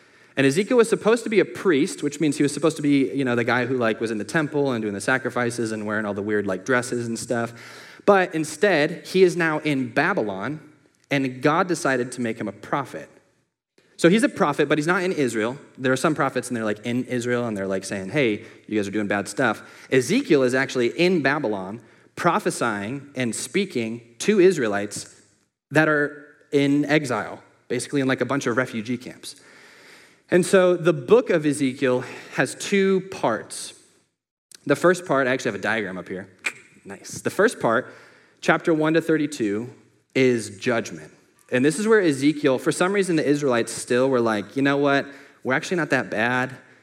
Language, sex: English, male